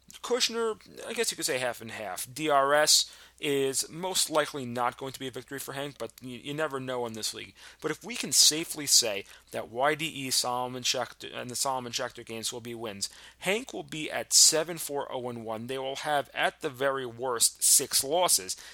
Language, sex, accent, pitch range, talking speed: English, male, American, 115-140 Hz, 200 wpm